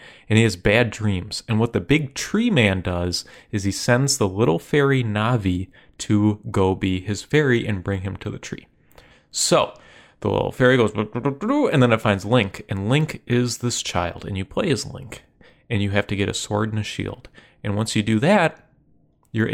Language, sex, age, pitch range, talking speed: English, male, 20-39, 95-120 Hz, 205 wpm